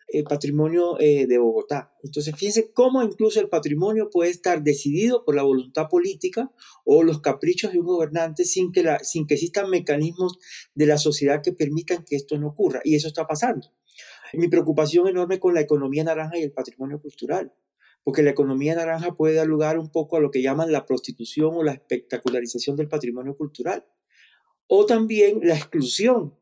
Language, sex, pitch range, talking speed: Spanish, male, 140-165 Hz, 175 wpm